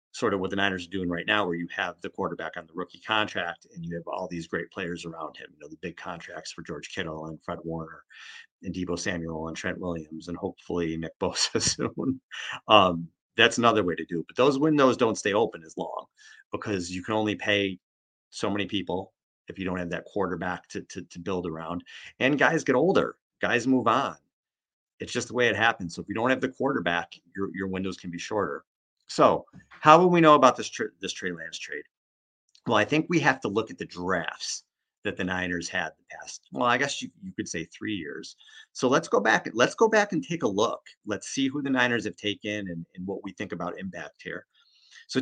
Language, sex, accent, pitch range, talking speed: English, male, American, 85-125 Hz, 230 wpm